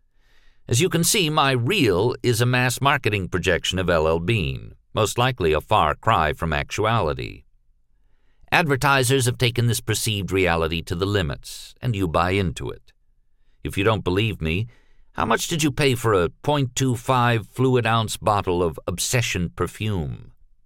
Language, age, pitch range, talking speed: English, 50-69, 85-125 Hz, 155 wpm